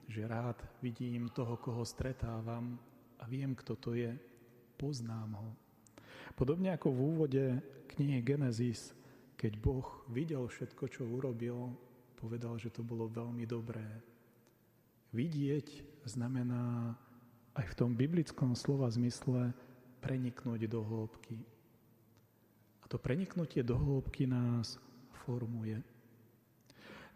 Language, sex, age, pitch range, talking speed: Slovak, male, 40-59, 120-135 Hz, 110 wpm